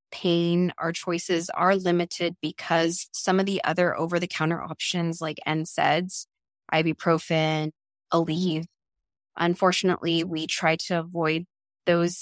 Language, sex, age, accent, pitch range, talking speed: English, female, 20-39, American, 155-185 Hz, 110 wpm